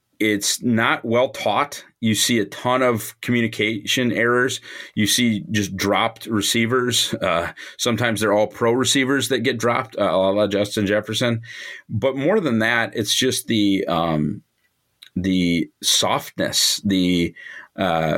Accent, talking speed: American, 135 wpm